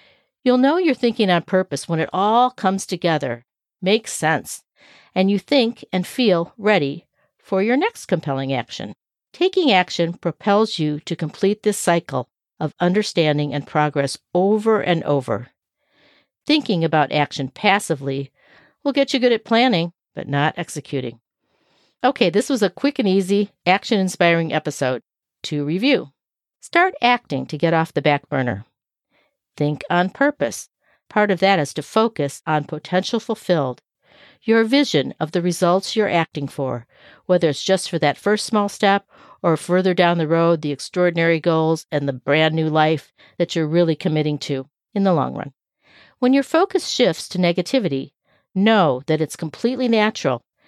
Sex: female